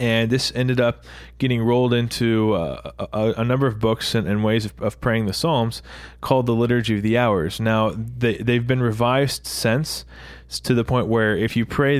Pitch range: 100-120 Hz